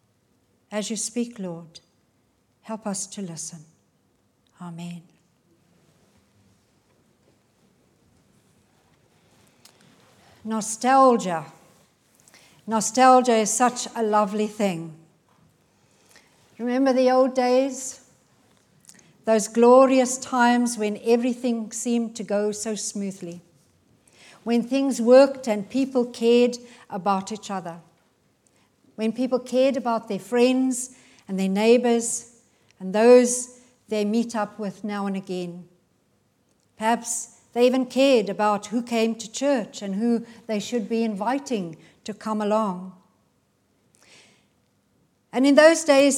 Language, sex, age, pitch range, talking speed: English, female, 60-79, 195-250 Hz, 105 wpm